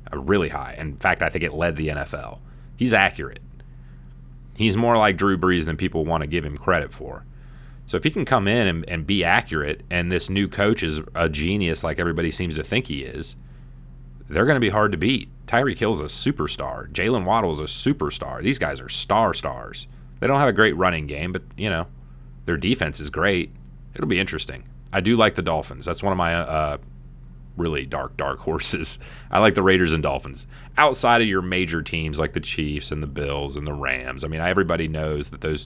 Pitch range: 65-95 Hz